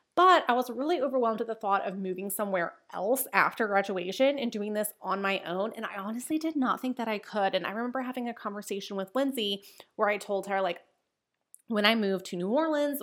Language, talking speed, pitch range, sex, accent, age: English, 220 wpm, 195-260 Hz, female, American, 20-39